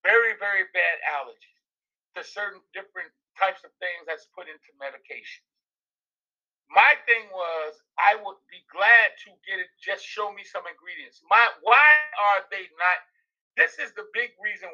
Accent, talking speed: American, 160 wpm